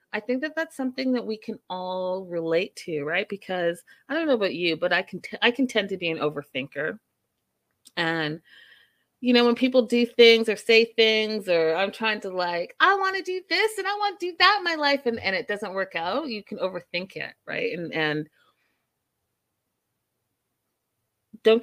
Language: English